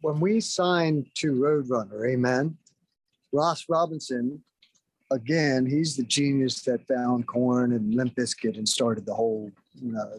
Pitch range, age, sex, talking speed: 125-160 Hz, 50-69, male, 140 wpm